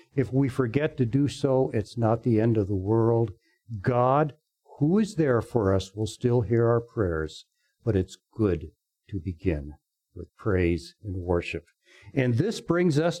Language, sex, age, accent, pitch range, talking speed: English, male, 60-79, American, 115-170 Hz, 170 wpm